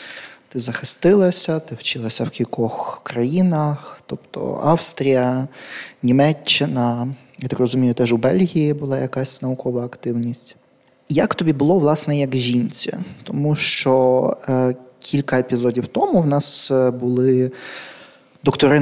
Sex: male